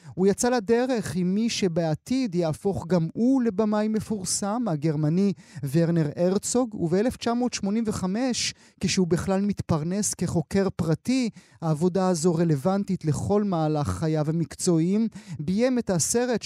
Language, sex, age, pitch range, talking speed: Hebrew, male, 30-49, 160-200 Hz, 110 wpm